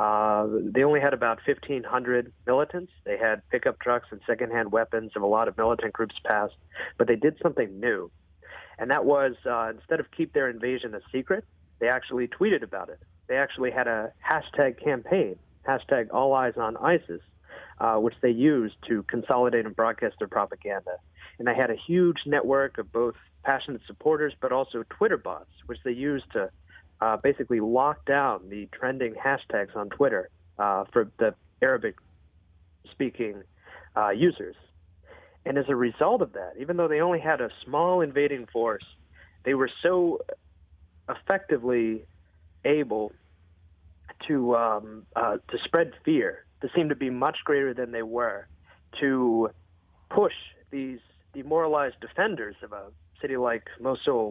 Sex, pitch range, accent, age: male, 100-140 Hz, American, 40-59